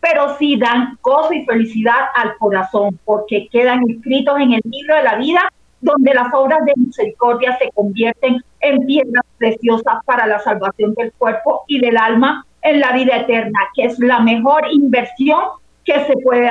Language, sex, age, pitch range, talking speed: Spanish, female, 40-59, 225-285 Hz, 170 wpm